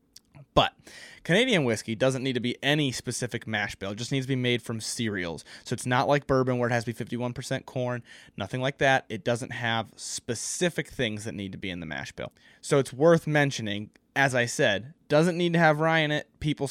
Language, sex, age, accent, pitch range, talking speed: English, male, 20-39, American, 110-140 Hz, 225 wpm